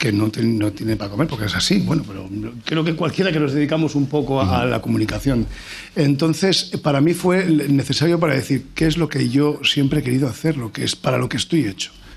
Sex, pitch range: male, 120-150 Hz